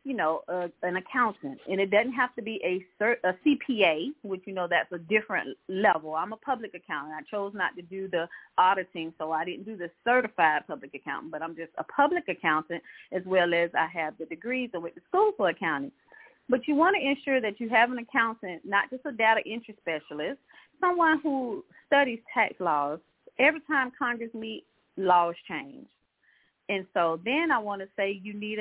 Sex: female